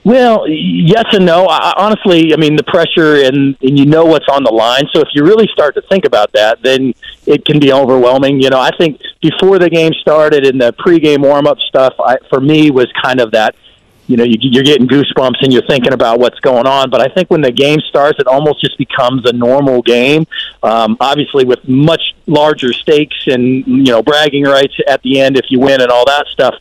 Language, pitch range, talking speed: English, 130-160 Hz, 230 wpm